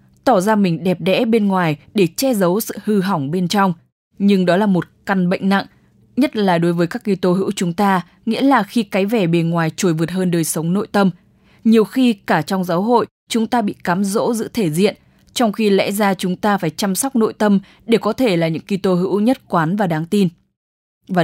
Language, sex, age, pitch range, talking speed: English, female, 10-29, 180-225 Hz, 235 wpm